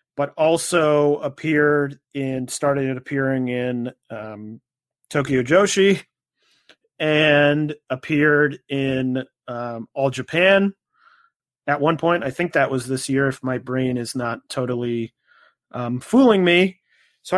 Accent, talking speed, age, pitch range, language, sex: American, 120 wpm, 30-49, 135-170 Hz, English, male